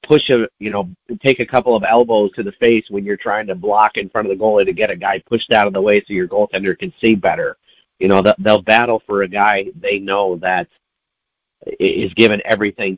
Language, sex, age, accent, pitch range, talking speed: English, male, 50-69, American, 95-115 Hz, 230 wpm